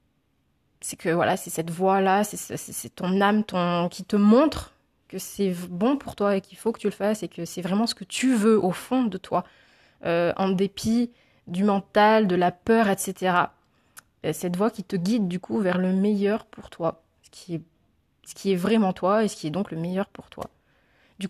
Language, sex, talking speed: French, female, 225 wpm